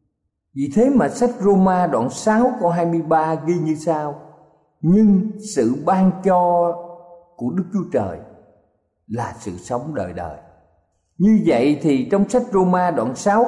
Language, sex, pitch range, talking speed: Vietnamese, male, 115-185 Hz, 145 wpm